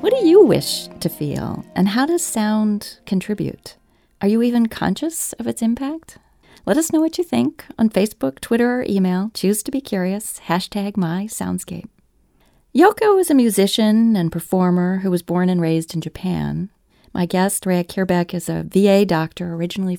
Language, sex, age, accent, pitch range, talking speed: English, female, 40-59, American, 175-230 Hz, 175 wpm